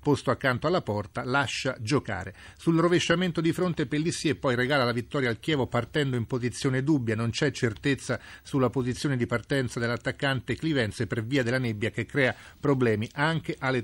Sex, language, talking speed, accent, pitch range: male, Italian, 175 wpm, native, 120-145 Hz